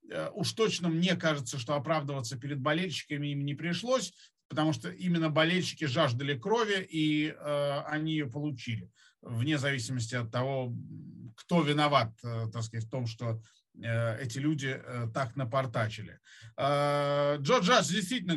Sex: male